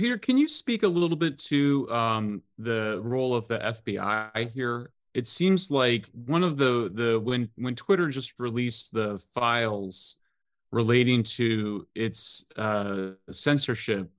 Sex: male